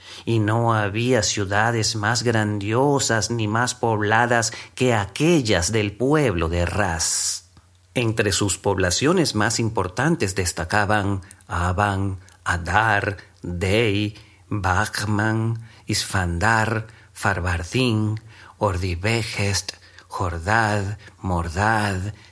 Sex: male